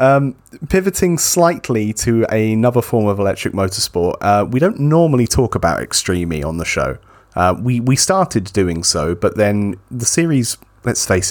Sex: male